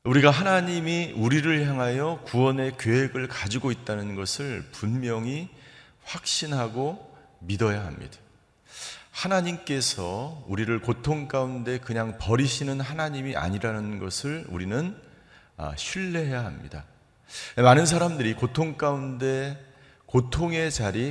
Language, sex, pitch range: Korean, male, 115-150 Hz